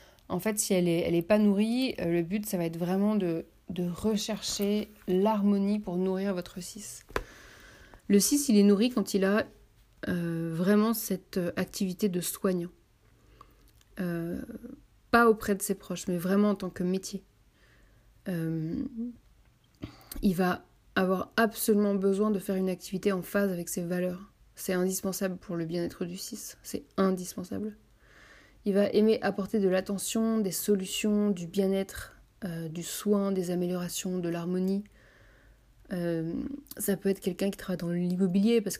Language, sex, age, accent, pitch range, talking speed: French, female, 30-49, French, 175-205 Hz, 155 wpm